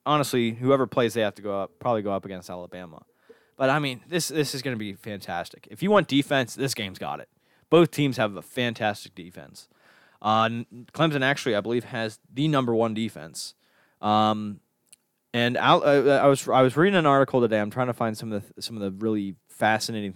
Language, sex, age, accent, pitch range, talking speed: English, male, 20-39, American, 110-140 Hz, 210 wpm